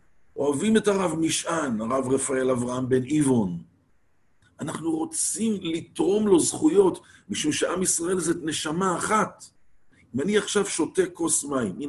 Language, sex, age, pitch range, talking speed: English, male, 50-69, 135-205 Hz, 125 wpm